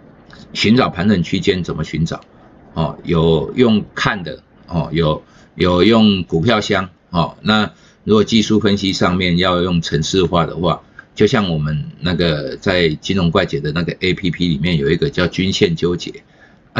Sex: male